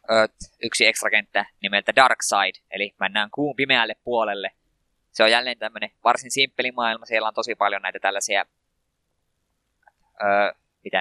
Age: 20-39